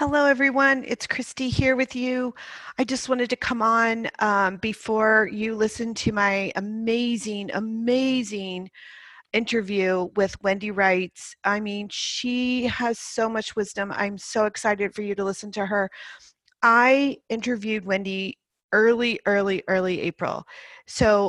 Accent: American